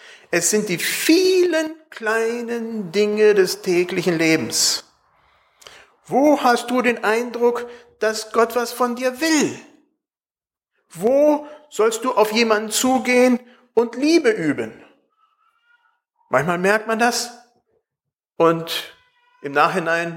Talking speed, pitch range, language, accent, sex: 105 wpm, 150-250 Hz, German, German, male